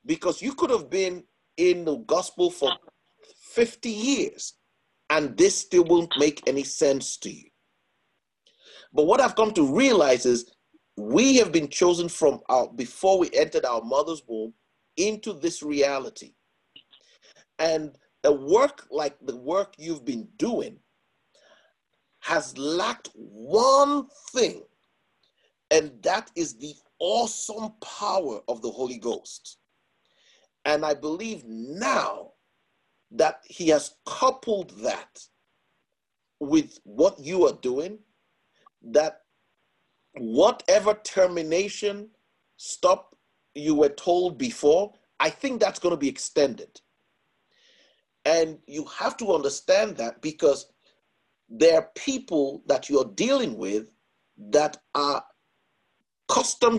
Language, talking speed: English, 115 wpm